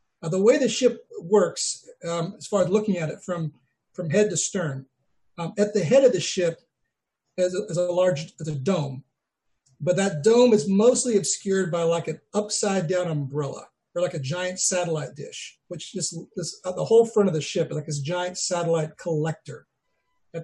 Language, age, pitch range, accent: English, 40-59, 155-205 Hz, American